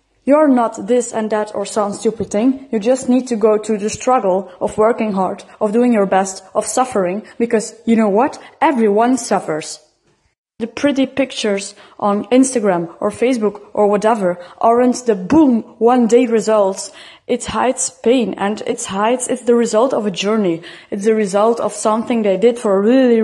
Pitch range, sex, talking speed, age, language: 210-255 Hz, female, 180 wpm, 20-39, English